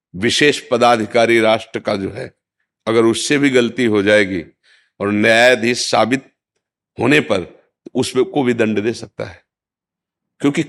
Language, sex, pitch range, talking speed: Hindi, male, 110-160 Hz, 145 wpm